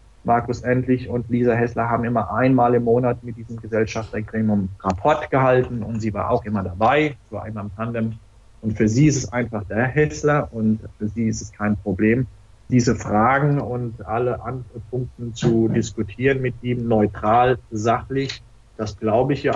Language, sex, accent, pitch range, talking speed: German, male, German, 105-120 Hz, 175 wpm